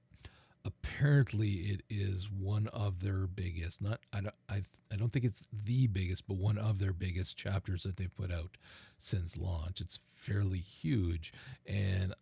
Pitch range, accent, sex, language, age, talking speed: 90-115 Hz, American, male, English, 40-59, 160 wpm